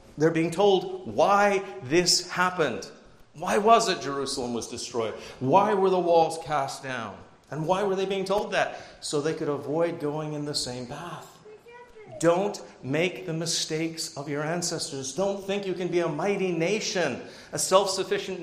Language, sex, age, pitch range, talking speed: English, male, 40-59, 140-185 Hz, 165 wpm